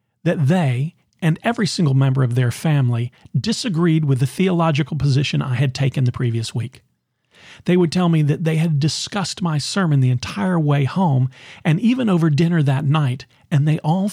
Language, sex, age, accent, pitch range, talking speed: English, male, 40-59, American, 125-170 Hz, 185 wpm